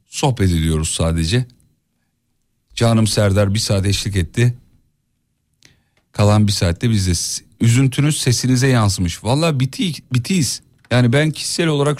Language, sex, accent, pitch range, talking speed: Turkish, male, native, 100-140 Hz, 115 wpm